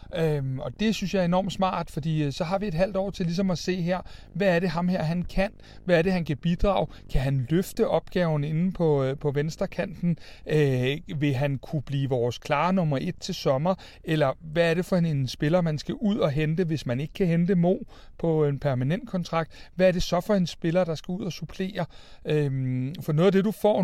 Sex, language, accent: male, Danish, native